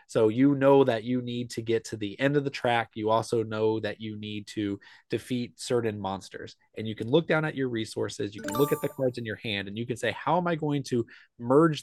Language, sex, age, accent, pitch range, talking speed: English, male, 20-39, American, 110-145 Hz, 260 wpm